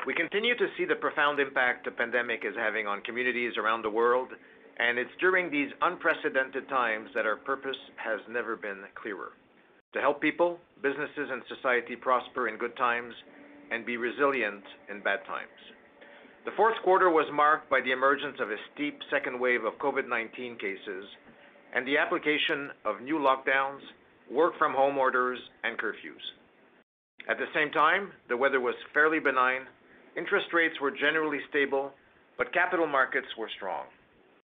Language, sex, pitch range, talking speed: English, male, 125-160 Hz, 160 wpm